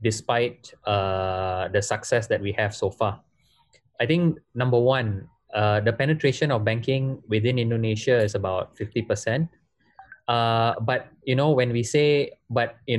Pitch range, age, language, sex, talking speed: 110-155 Hz, 20-39, Indonesian, male, 150 wpm